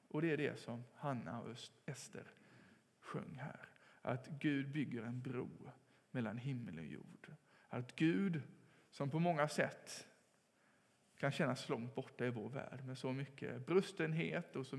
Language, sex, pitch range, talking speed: English, male, 125-155 Hz, 155 wpm